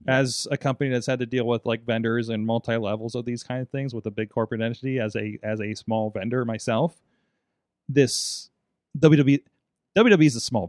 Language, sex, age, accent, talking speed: English, male, 30-49, American, 200 wpm